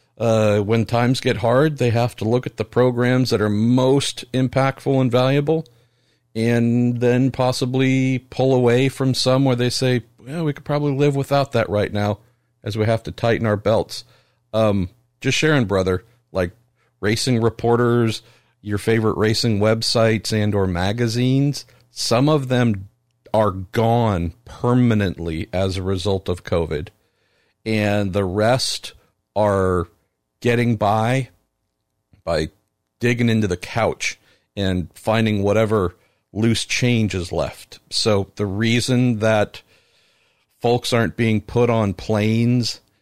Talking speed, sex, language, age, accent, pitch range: 135 wpm, male, English, 50-69, American, 105-120 Hz